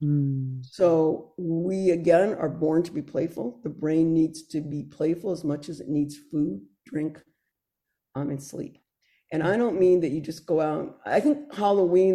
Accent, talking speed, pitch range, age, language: American, 180 wpm, 155-190 Hz, 50-69, English